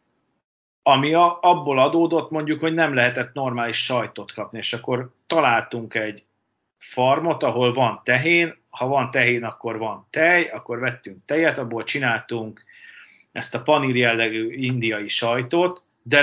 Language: Hungarian